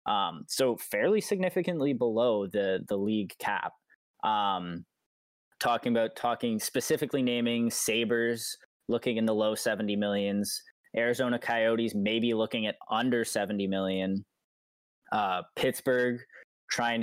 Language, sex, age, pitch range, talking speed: English, male, 10-29, 100-120 Hz, 115 wpm